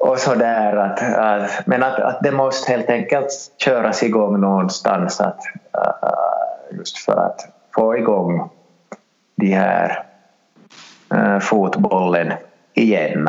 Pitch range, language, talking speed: 100-135 Hz, Swedish, 120 wpm